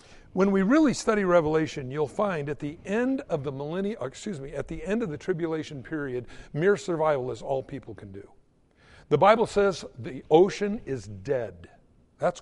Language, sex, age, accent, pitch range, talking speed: English, male, 60-79, American, 145-195 Hz, 180 wpm